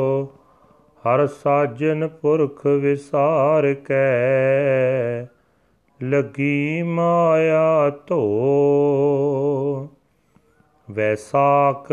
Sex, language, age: male, Punjabi, 40-59